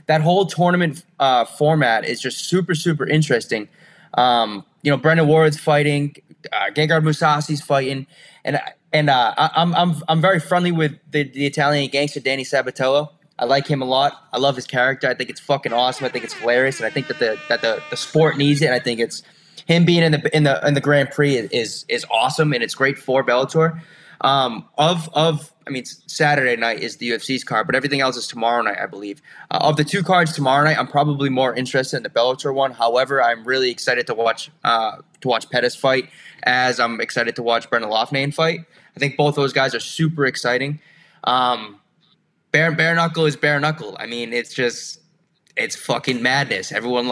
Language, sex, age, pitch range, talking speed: English, male, 20-39, 125-160 Hz, 210 wpm